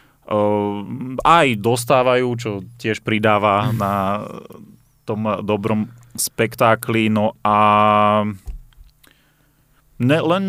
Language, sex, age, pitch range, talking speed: Slovak, male, 30-49, 100-120 Hz, 70 wpm